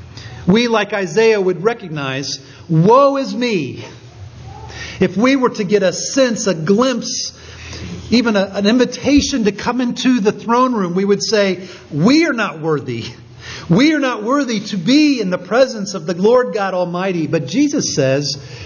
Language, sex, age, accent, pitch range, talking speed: English, male, 50-69, American, 125-180 Hz, 160 wpm